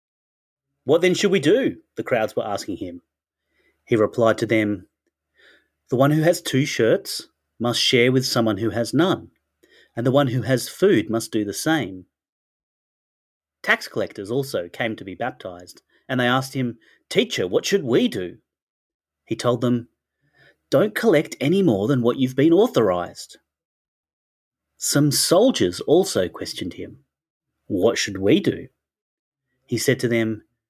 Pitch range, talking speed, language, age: 95-130 Hz, 150 wpm, English, 30-49